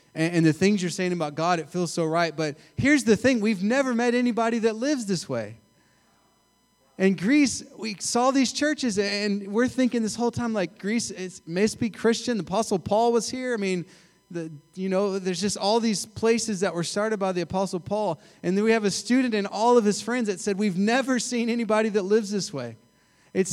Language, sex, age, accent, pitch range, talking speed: English, male, 30-49, American, 160-215 Hz, 220 wpm